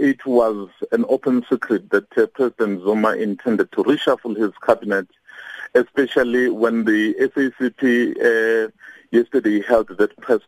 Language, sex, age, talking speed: English, male, 50-69, 125 wpm